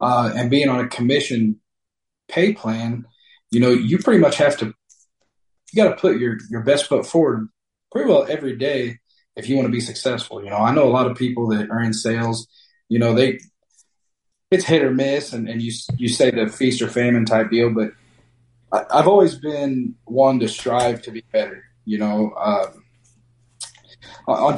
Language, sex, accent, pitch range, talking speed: English, male, American, 110-125 Hz, 195 wpm